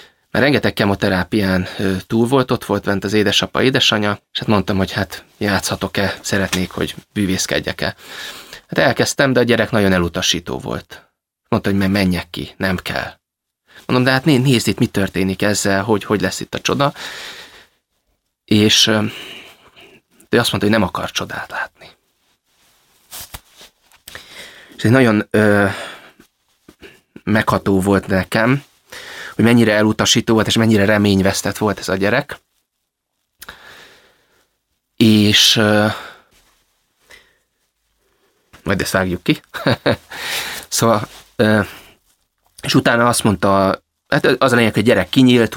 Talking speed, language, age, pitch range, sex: 120 wpm, Hungarian, 30-49, 95-110 Hz, male